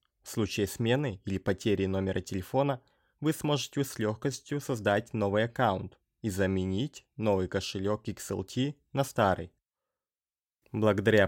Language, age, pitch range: Russian, 20-39, 95-125 Hz